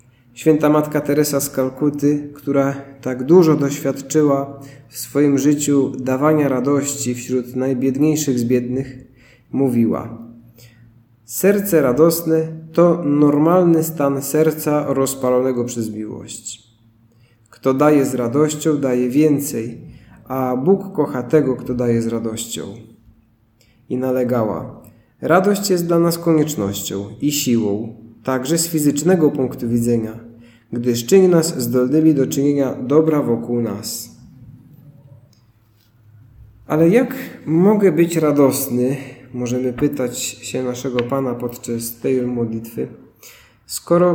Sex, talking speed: male, 105 wpm